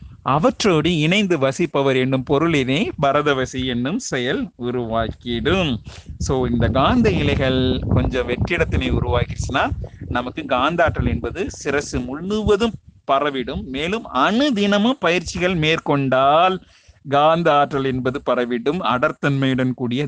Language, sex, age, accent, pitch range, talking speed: Tamil, male, 30-49, native, 125-160 Hz, 100 wpm